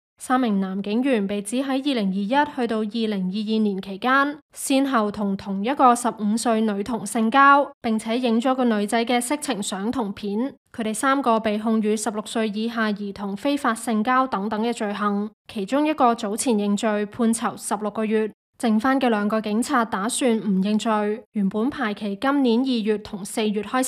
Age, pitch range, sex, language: 20-39, 215-255 Hz, female, Chinese